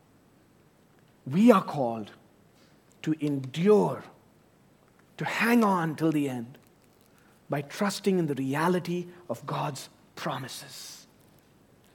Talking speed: 95 wpm